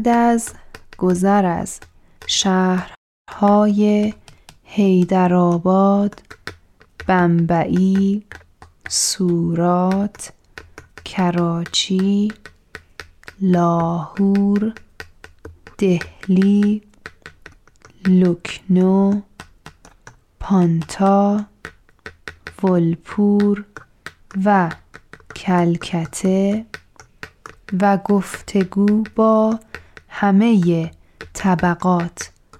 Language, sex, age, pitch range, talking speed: Persian, female, 20-39, 170-205 Hz, 40 wpm